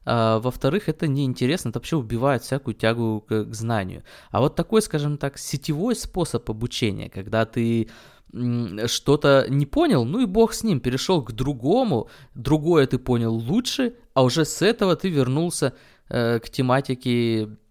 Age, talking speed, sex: 20-39, 145 wpm, male